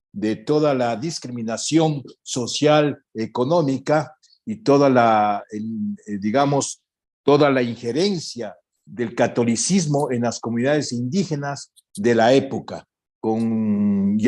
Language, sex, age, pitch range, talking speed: Spanish, male, 50-69, 120-160 Hz, 105 wpm